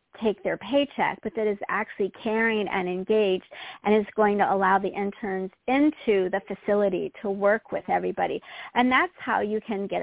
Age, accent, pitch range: 40-59, American, 195-230 Hz